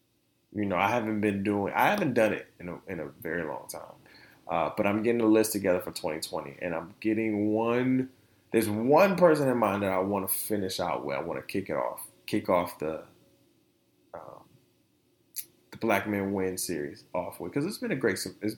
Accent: American